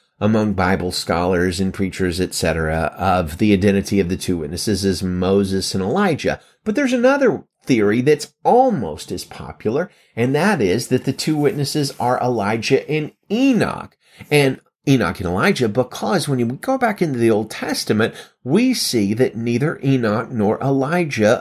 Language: English